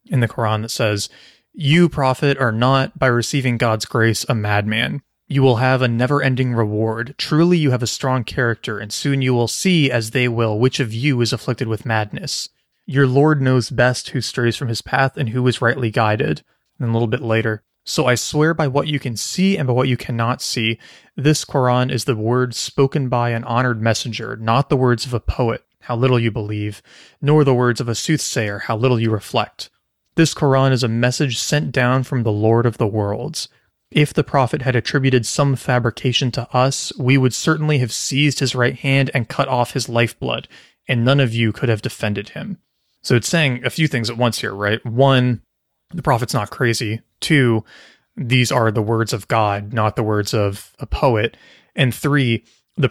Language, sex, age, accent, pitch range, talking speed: English, male, 30-49, American, 115-135 Hz, 205 wpm